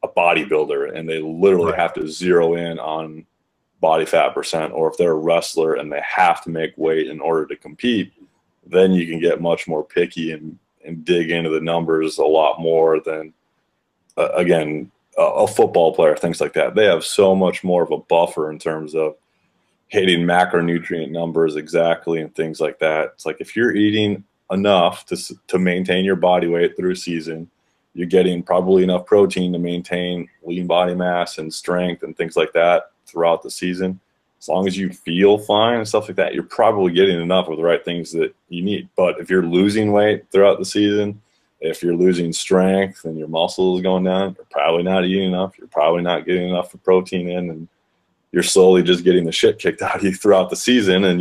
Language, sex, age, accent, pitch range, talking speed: English, male, 30-49, American, 80-95 Hz, 200 wpm